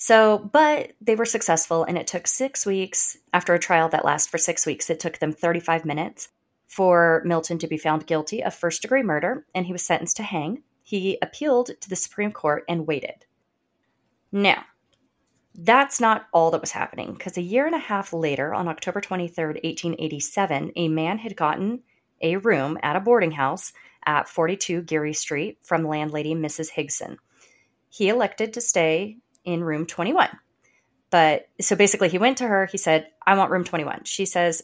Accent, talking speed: American, 180 wpm